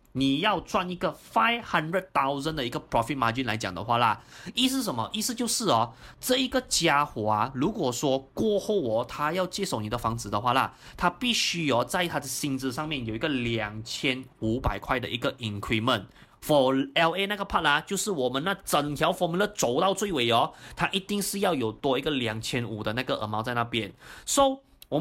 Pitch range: 125-200 Hz